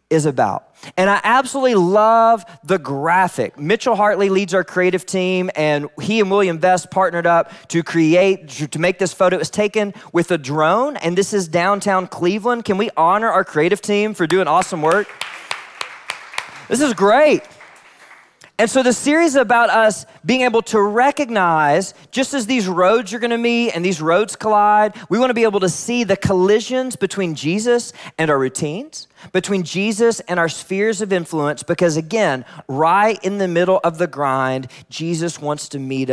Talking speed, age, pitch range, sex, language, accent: 175 wpm, 20-39, 165-210 Hz, male, English, American